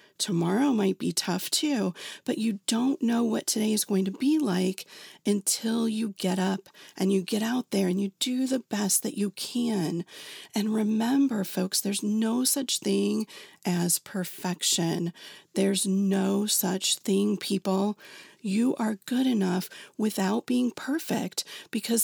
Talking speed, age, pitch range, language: 150 wpm, 40-59, 195-245 Hz, English